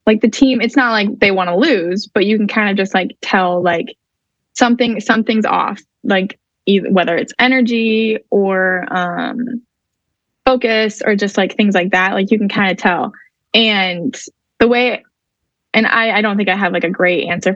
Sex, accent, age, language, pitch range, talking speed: female, American, 10-29, English, 185-220 Hz, 190 wpm